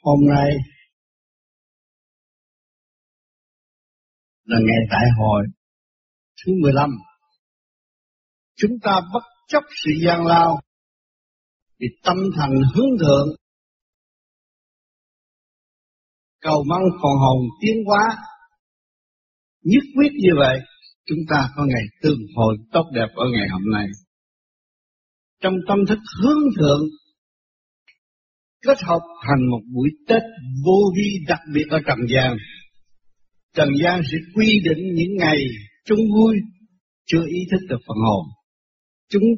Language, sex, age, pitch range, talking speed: Vietnamese, male, 60-79, 130-190 Hz, 115 wpm